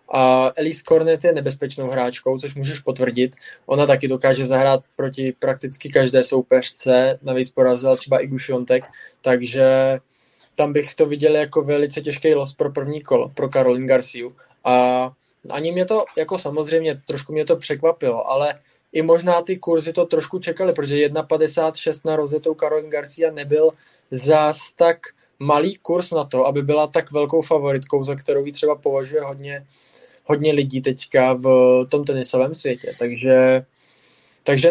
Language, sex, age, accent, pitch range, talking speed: Czech, male, 20-39, native, 130-155 Hz, 150 wpm